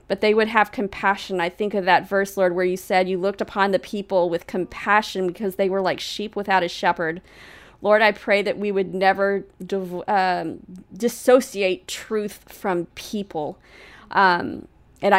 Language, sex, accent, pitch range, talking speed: English, female, American, 185-205 Hz, 175 wpm